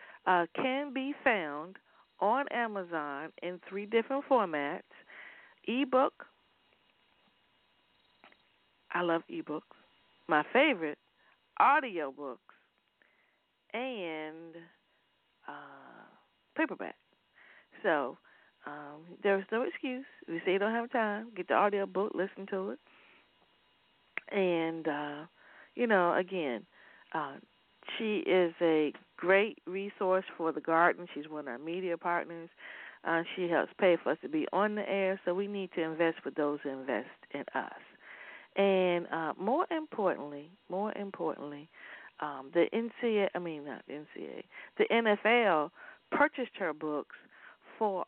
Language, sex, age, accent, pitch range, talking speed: English, female, 40-59, American, 165-225 Hz, 125 wpm